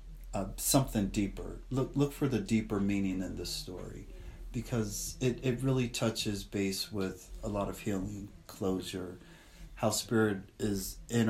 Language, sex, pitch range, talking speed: English, male, 95-120 Hz, 150 wpm